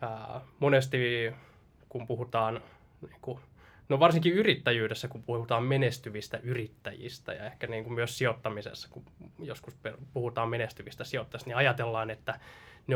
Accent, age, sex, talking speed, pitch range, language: native, 20-39, male, 125 wpm, 110-135 Hz, Finnish